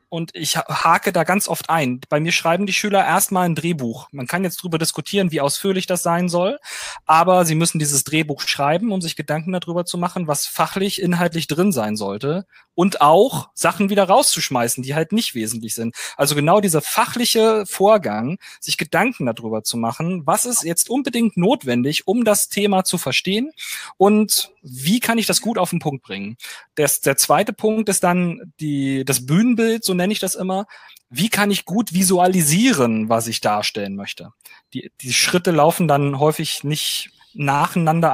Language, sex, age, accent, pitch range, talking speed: German, male, 30-49, German, 140-185 Hz, 175 wpm